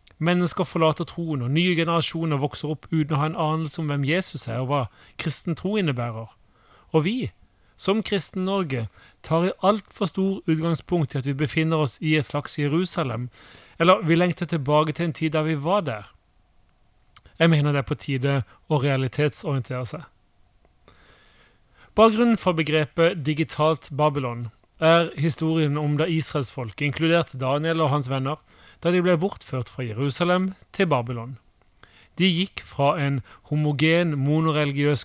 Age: 30-49